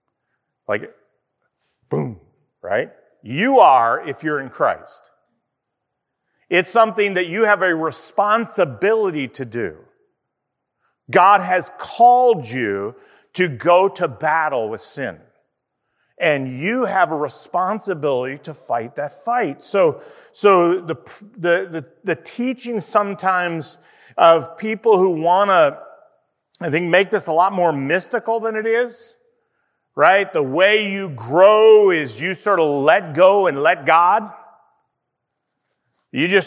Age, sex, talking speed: 40-59, male, 125 wpm